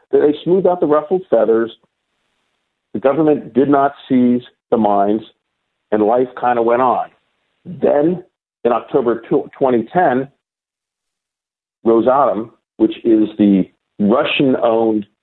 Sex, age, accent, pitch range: male, 50-69, American, 110-155 Hz